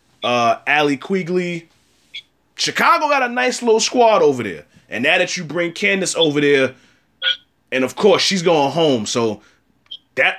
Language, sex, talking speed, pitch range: English, male, 155 wpm, 135-190 Hz